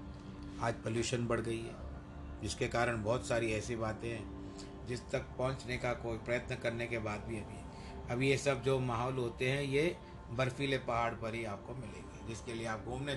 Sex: male